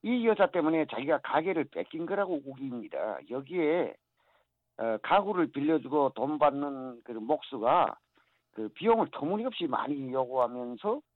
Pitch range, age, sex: 140-190 Hz, 50-69, male